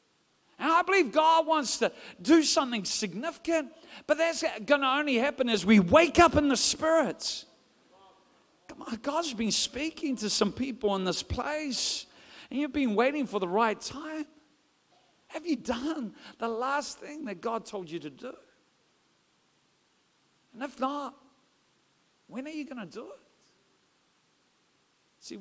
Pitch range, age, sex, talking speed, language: 190-285 Hz, 50-69, male, 150 wpm, English